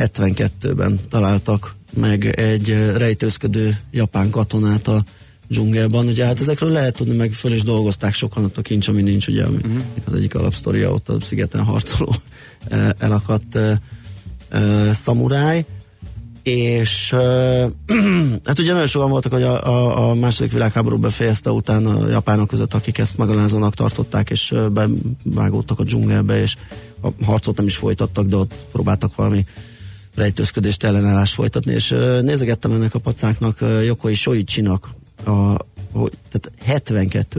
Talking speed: 135 wpm